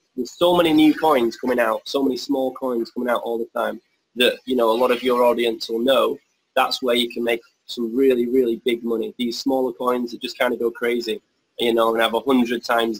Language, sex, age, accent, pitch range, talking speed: English, male, 20-39, British, 120-145 Hz, 240 wpm